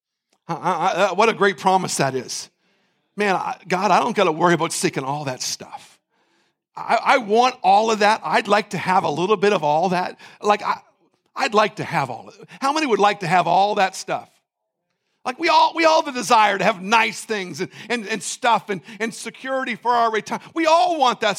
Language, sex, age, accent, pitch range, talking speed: English, male, 50-69, American, 200-320 Hz, 225 wpm